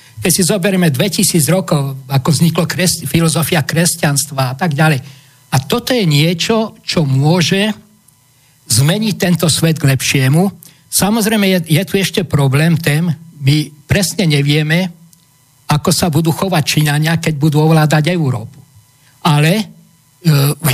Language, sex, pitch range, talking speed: Slovak, male, 140-170 Hz, 130 wpm